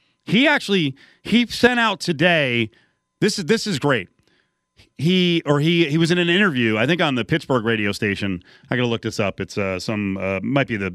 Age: 30-49